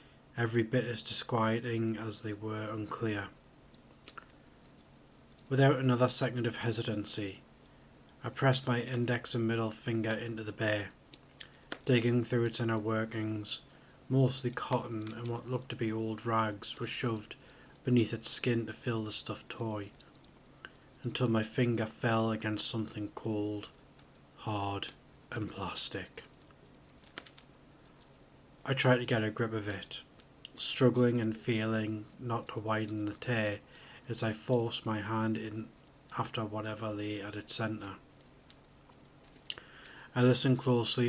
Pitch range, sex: 110-125 Hz, male